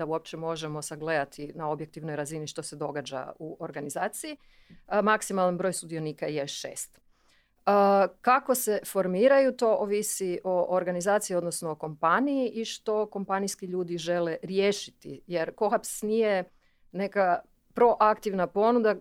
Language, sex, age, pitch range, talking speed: Croatian, female, 40-59, 165-205 Hz, 125 wpm